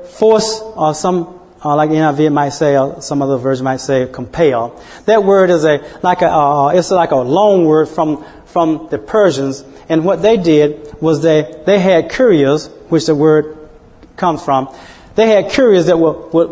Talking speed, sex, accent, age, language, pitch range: 195 wpm, male, American, 30-49, English, 135-180 Hz